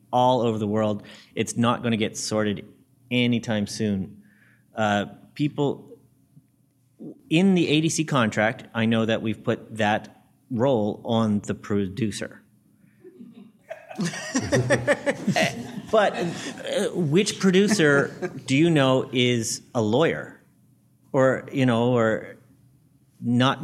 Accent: American